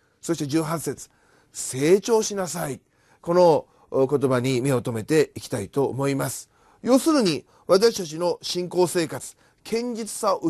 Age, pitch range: 30-49, 130-195 Hz